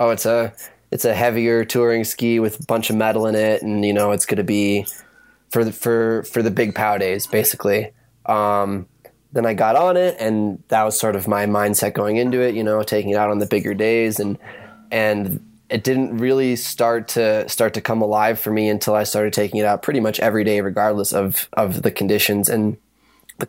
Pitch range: 105-120 Hz